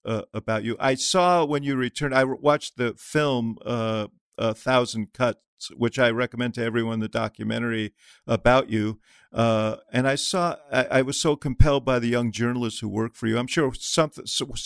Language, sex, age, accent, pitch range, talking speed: English, male, 50-69, American, 110-130 Hz, 190 wpm